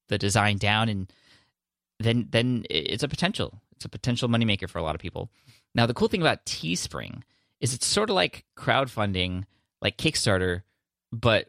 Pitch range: 95-120 Hz